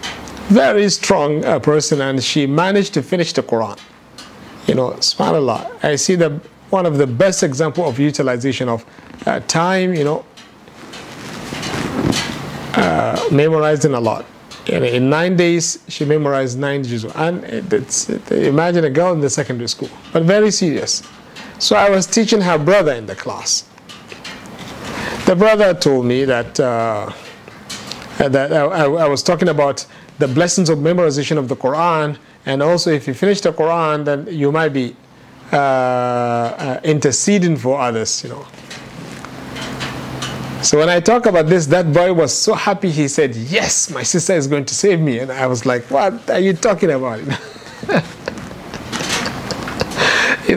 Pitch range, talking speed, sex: 135-180 Hz, 160 wpm, male